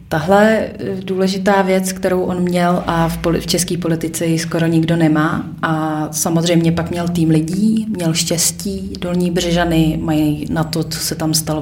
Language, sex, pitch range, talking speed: Czech, female, 165-195 Hz, 165 wpm